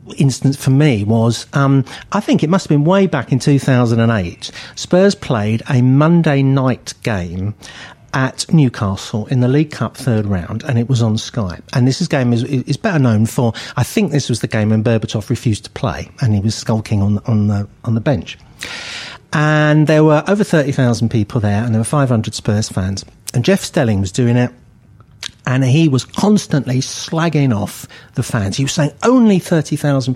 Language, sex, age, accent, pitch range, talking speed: English, male, 50-69, British, 115-150 Hz, 195 wpm